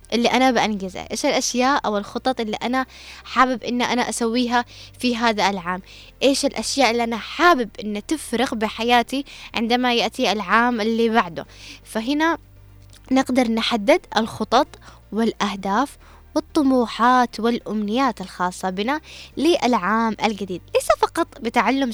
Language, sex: Arabic, female